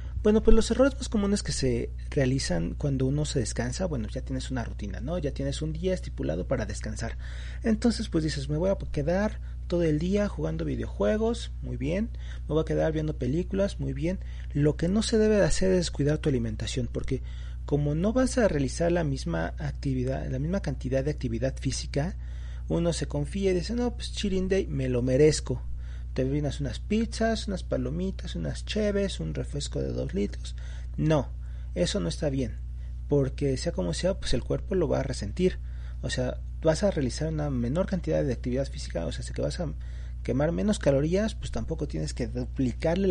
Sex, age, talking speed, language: male, 40-59, 195 wpm, Spanish